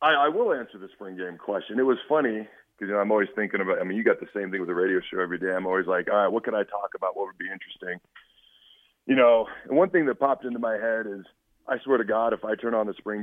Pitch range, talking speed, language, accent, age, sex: 100-120 Hz, 305 wpm, English, American, 30-49, male